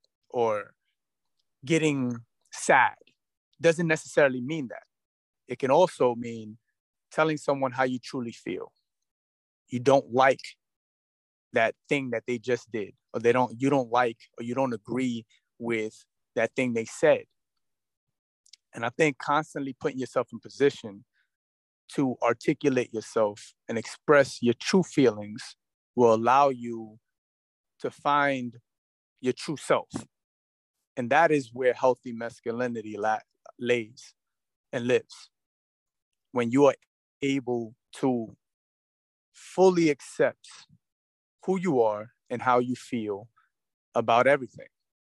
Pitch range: 115-140 Hz